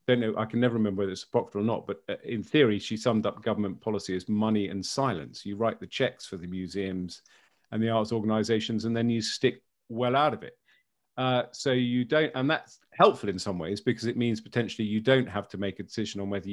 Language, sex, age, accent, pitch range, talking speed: English, male, 40-59, British, 100-120 Hz, 230 wpm